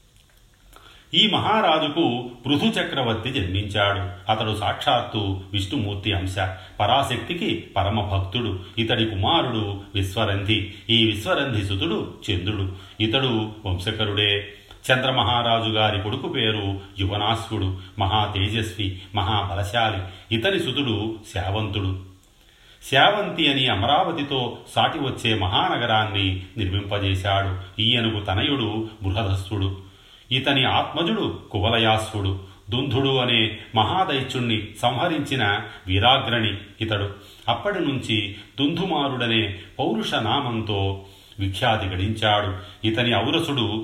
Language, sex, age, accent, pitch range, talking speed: Telugu, male, 40-59, native, 100-120 Hz, 80 wpm